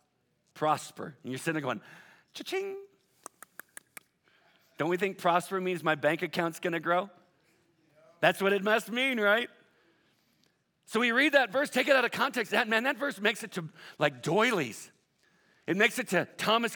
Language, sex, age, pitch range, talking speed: English, male, 50-69, 150-210 Hz, 170 wpm